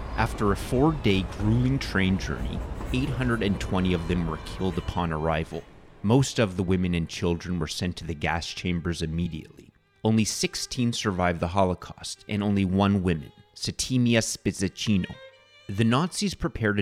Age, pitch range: 30-49, 90-115 Hz